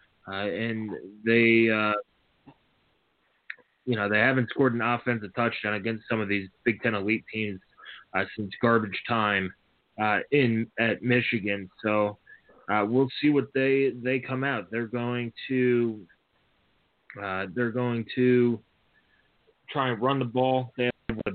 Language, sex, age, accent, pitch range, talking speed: English, male, 30-49, American, 115-130 Hz, 145 wpm